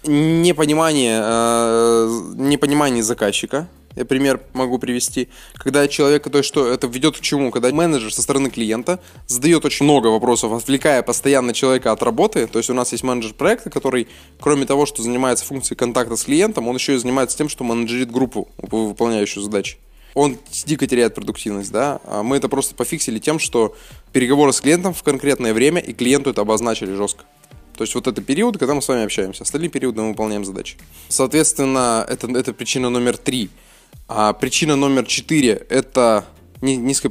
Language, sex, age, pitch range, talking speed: Russian, male, 20-39, 115-140 Hz, 170 wpm